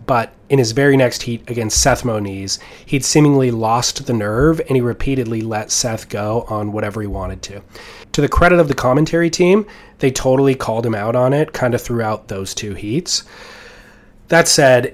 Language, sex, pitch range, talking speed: English, male, 110-140 Hz, 190 wpm